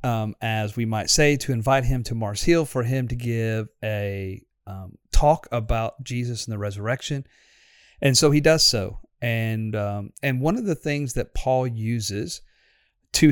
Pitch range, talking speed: 110-135 Hz, 175 wpm